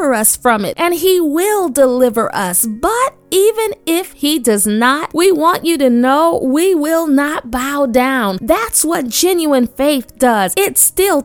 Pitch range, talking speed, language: 260-345 Hz, 165 wpm, English